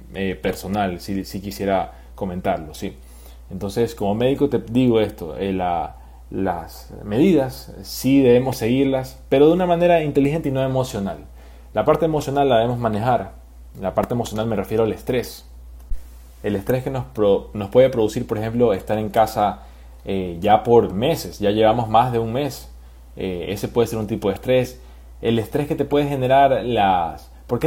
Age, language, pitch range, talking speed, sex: 20-39, Spanish, 95-130 Hz, 170 wpm, male